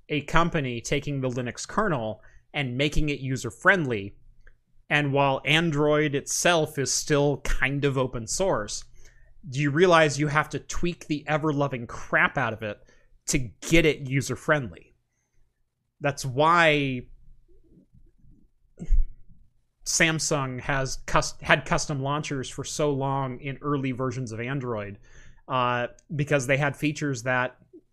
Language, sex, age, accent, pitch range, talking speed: English, male, 30-49, American, 125-150 Hz, 125 wpm